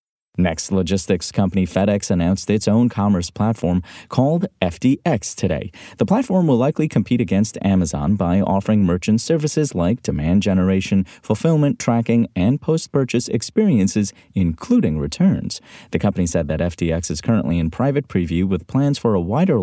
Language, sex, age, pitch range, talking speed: English, male, 30-49, 90-130 Hz, 145 wpm